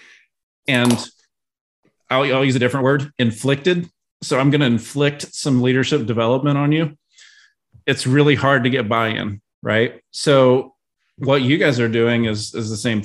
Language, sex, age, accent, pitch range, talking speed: English, male, 30-49, American, 110-135 Hz, 160 wpm